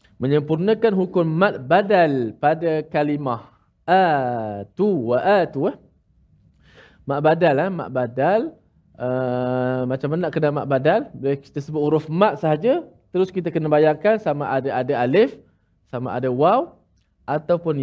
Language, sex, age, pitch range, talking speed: Malayalam, male, 20-39, 125-180 Hz, 125 wpm